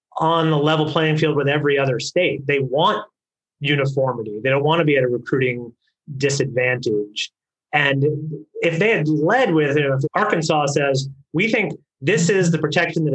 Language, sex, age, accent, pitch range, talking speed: English, male, 30-49, American, 140-165 Hz, 165 wpm